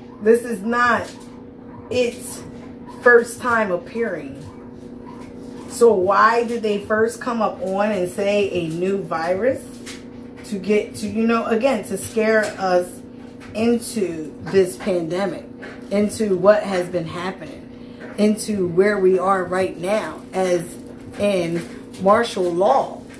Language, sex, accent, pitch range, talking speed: English, female, American, 195-250 Hz, 120 wpm